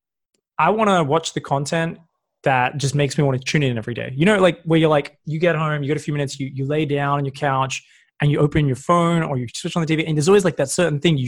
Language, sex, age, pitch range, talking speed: English, male, 20-39, 135-165 Hz, 300 wpm